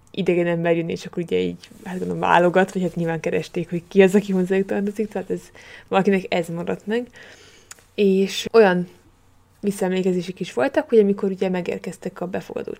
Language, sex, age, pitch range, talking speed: Hungarian, female, 20-39, 175-205 Hz, 175 wpm